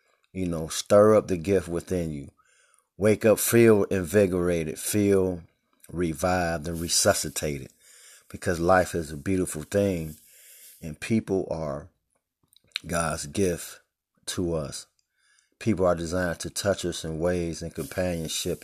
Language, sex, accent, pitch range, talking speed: English, male, American, 80-95 Hz, 125 wpm